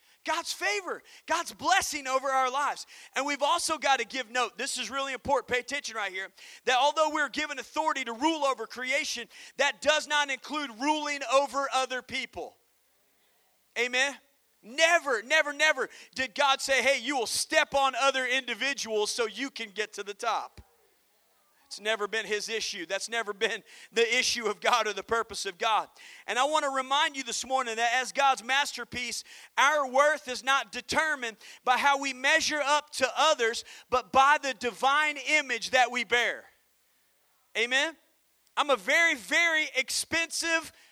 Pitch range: 240-300 Hz